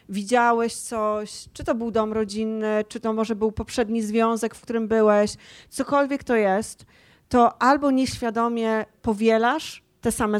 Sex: female